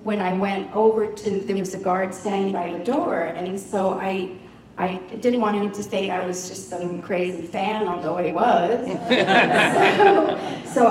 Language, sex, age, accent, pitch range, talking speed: English, female, 40-59, American, 180-215 Hz, 180 wpm